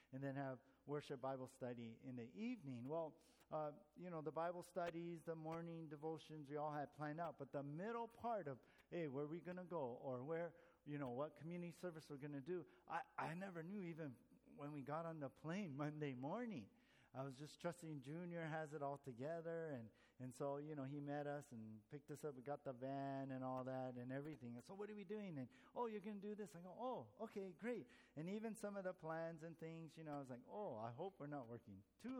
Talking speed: 240 wpm